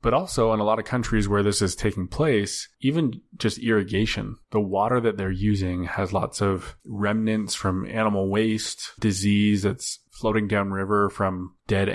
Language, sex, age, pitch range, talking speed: English, male, 20-39, 95-115 Hz, 165 wpm